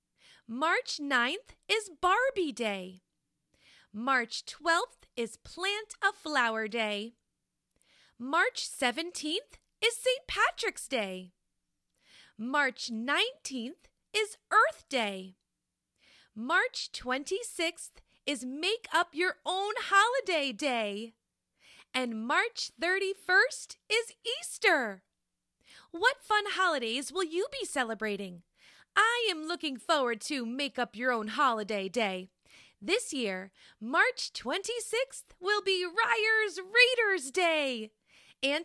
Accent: American